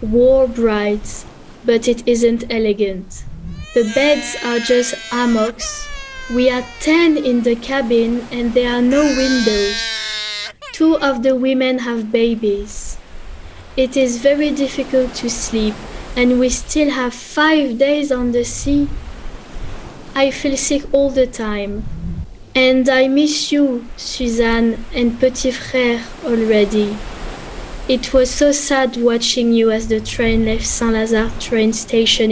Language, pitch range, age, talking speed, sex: English, 225-270 Hz, 20-39, 130 wpm, female